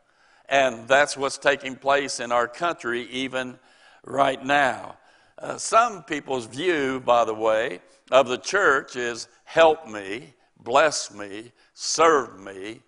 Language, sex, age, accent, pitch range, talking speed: English, male, 60-79, American, 125-155 Hz, 130 wpm